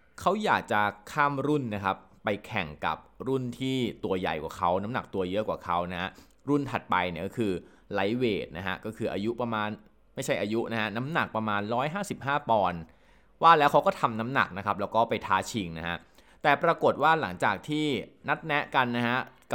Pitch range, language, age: 95-135 Hz, Thai, 20-39